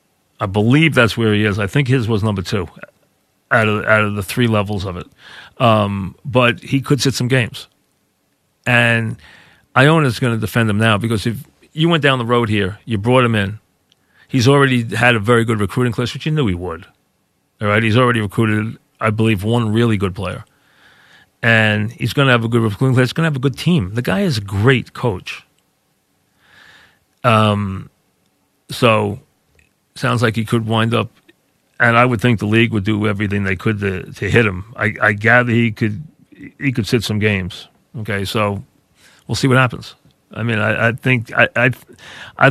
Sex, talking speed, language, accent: male, 195 wpm, English, American